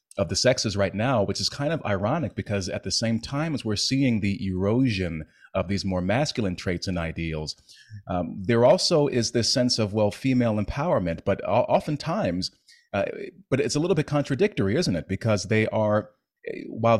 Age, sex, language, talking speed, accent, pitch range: 30-49, male, English, 185 wpm, American, 95-120 Hz